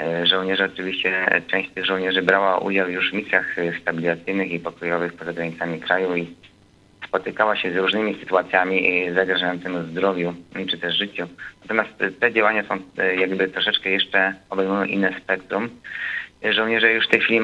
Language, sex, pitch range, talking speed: Polish, male, 90-100 Hz, 145 wpm